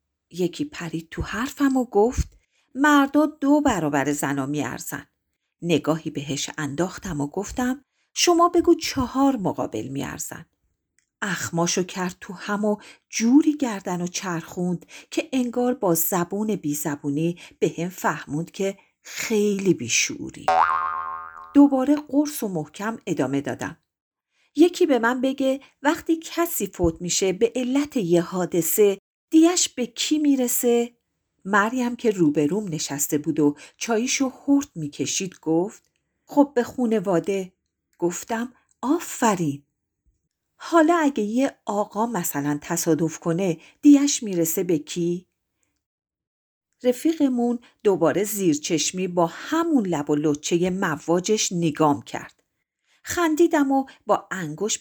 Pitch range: 165-270 Hz